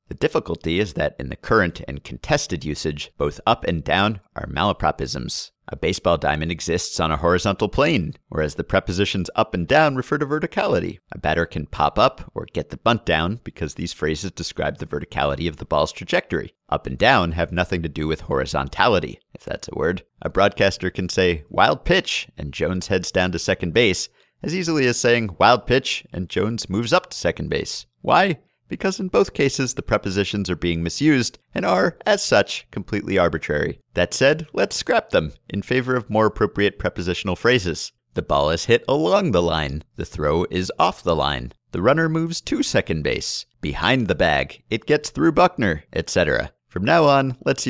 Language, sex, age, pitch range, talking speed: English, male, 50-69, 85-115 Hz, 190 wpm